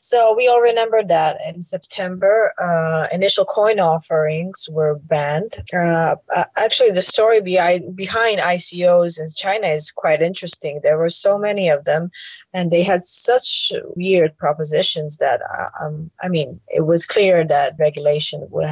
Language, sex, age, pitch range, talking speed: English, female, 20-39, 165-205 Hz, 145 wpm